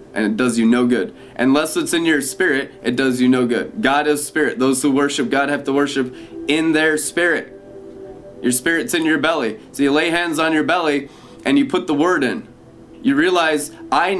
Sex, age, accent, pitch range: male, 20-39, American, 140-170 Hz